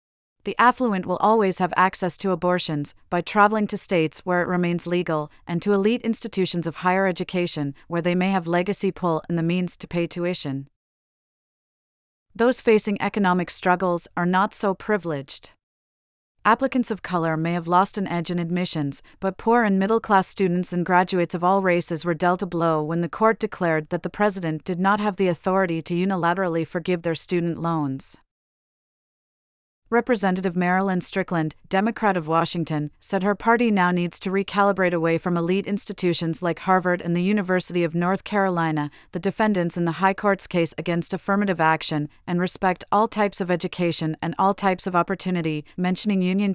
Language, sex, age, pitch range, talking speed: English, female, 30-49, 165-195 Hz, 170 wpm